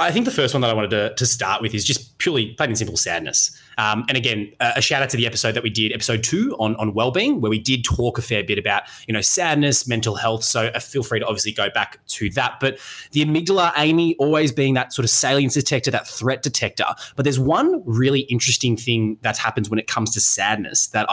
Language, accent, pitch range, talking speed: English, Australian, 110-135 Hz, 250 wpm